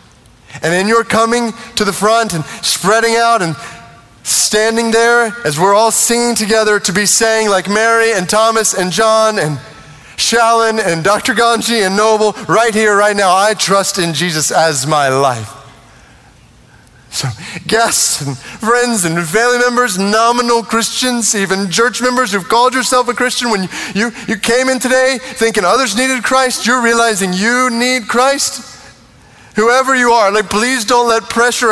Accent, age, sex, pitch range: American, 30-49, male, 195-245 Hz